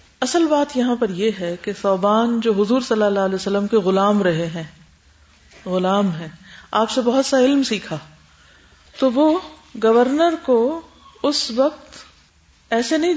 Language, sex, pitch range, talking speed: Urdu, female, 190-260 Hz, 155 wpm